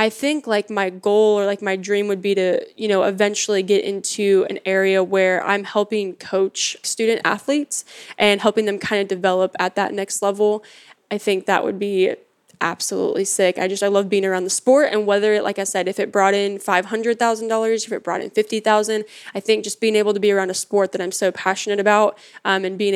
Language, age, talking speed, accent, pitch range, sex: English, 10-29, 220 wpm, American, 190-210 Hz, female